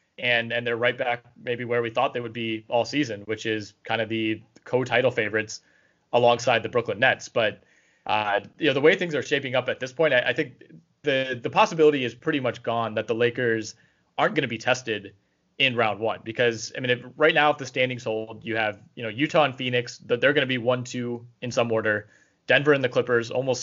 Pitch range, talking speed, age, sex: 115-130 Hz, 230 wpm, 20-39, male